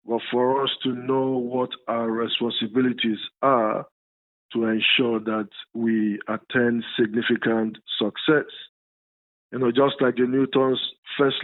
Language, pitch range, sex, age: English, 110-135 Hz, male, 50-69